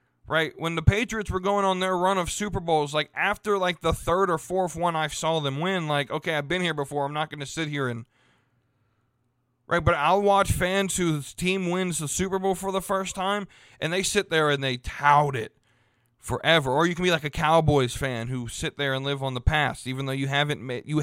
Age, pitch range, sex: 20-39, 130-185 Hz, male